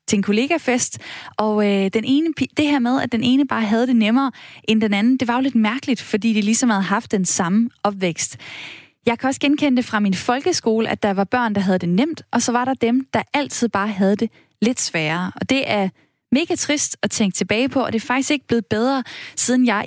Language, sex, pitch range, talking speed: Danish, female, 200-250 Hz, 240 wpm